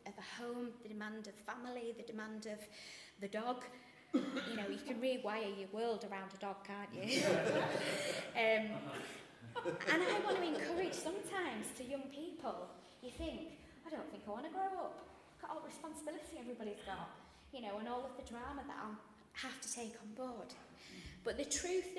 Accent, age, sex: British, 20-39, female